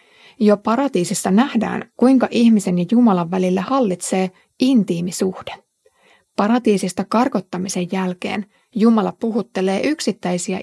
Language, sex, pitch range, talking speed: Finnish, female, 190-240 Hz, 90 wpm